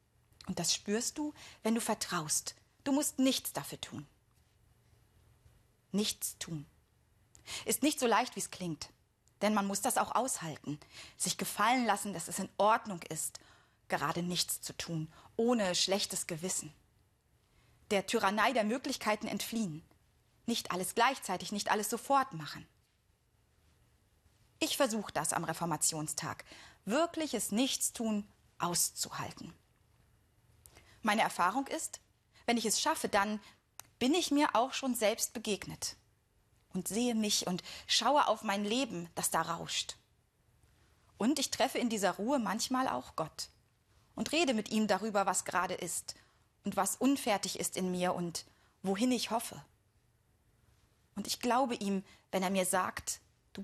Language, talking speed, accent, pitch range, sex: German, 140 wpm, German, 175-235 Hz, female